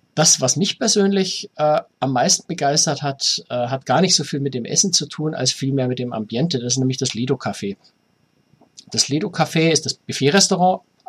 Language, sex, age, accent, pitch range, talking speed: German, male, 50-69, German, 125-150 Hz, 200 wpm